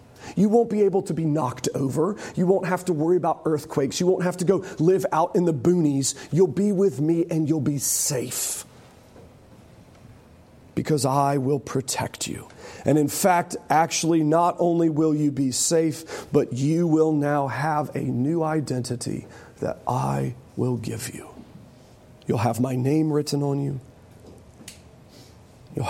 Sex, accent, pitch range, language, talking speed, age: male, American, 125-160 Hz, English, 160 wpm, 40-59